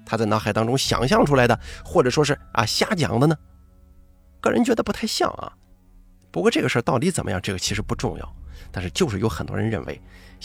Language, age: Chinese, 30-49